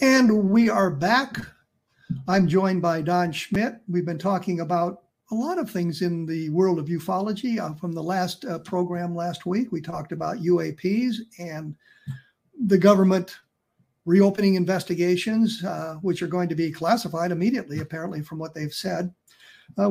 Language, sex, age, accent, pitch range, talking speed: English, male, 50-69, American, 165-200 Hz, 160 wpm